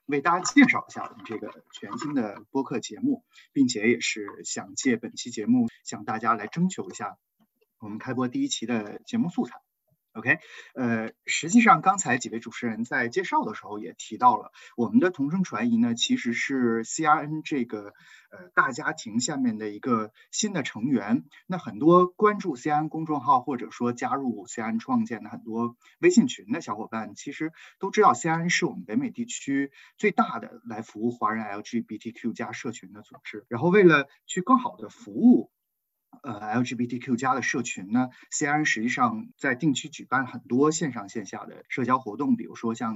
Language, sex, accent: Chinese, male, native